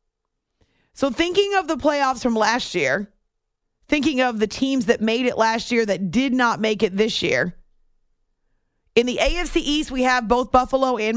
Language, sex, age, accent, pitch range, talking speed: English, female, 40-59, American, 200-255 Hz, 175 wpm